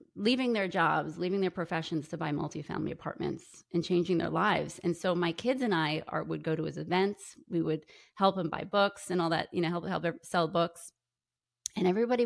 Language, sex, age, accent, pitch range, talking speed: English, female, 30-49, American, 165-200 Hz, 205 wpm